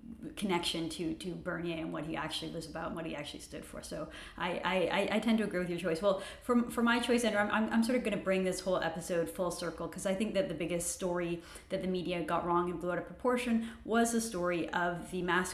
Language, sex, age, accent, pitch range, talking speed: English, female, 30-49, American, 170-200 Hz, 260 wpm